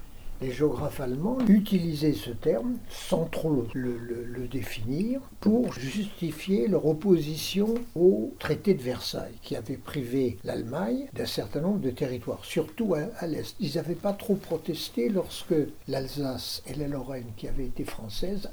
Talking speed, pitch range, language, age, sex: 150 wpm, 115-160 Hz, French, 60-79, male